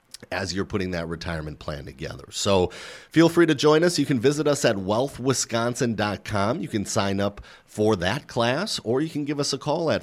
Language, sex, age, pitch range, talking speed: English, male, 40-59, 100-130 Hz, 205 wpm